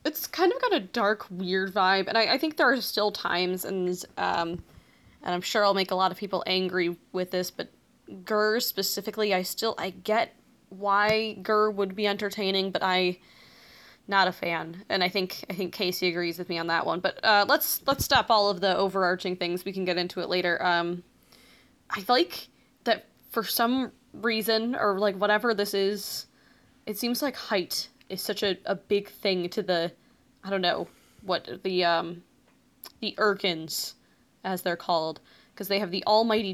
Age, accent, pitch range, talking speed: 20-39, American, 180-215 Hz, 190 wpm